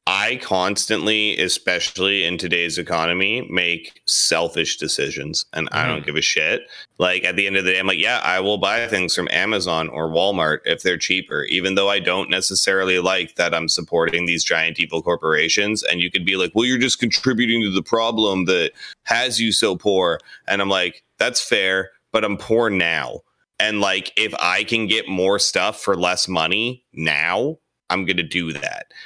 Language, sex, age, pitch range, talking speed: English, male, 30-49, 85-105 Hz, 190 wpm